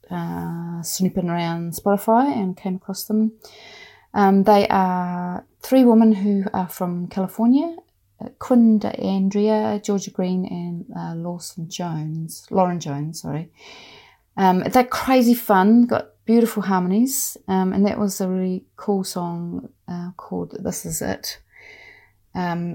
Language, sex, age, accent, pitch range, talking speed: English, female, 30-49, British, 150-195 Hz, 130 wpm